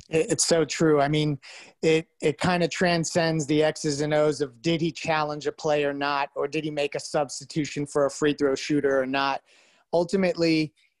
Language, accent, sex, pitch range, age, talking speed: English, American, male, 145-165 Hz, 30-49, 190 wpm